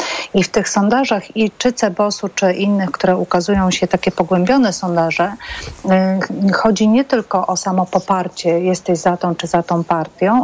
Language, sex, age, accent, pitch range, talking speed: Polish, female, 40-59, native, 170-200 Hz, 160 wpm